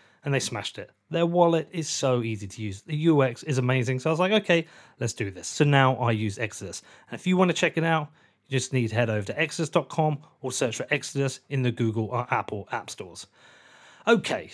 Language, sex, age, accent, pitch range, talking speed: English, male, 30-49, British, 115-145 Hz, 230 wpm